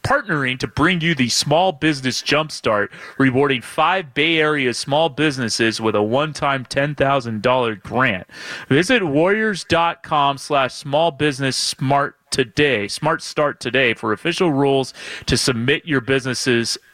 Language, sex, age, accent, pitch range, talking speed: English, male, 30-49, American, 130-175 Hz, 135 wpm